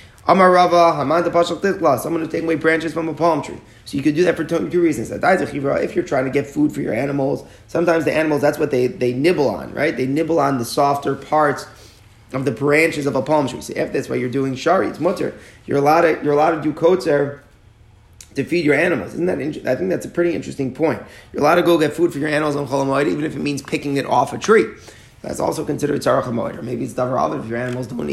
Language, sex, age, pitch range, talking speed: English, male, 30-49, 125-160 Hz, 240 wpm